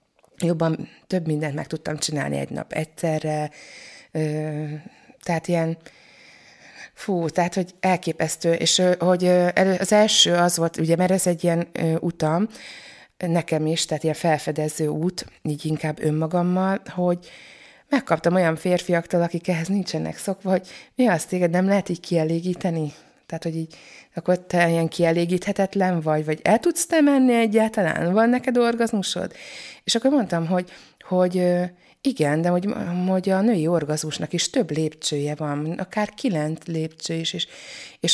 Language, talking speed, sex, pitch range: Hungarian, 150 wpm, female, 155-195 Hz